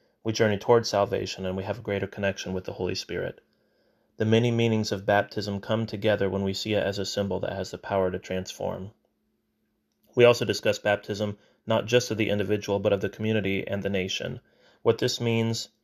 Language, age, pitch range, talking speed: English, 30-49, 100-115 Hz, 200 wpm